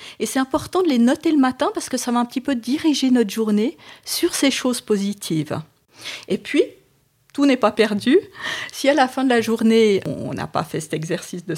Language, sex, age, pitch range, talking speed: French, female, 40-59, 195-275 Hz, 220 wpm